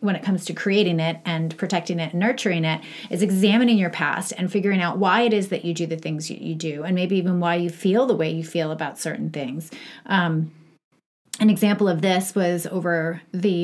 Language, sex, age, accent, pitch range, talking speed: English, female, 30-49, American, 165-200 Hz, 225 wpm